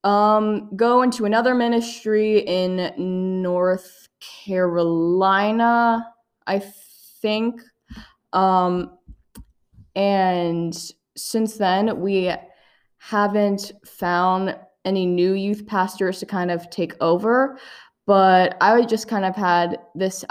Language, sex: English, female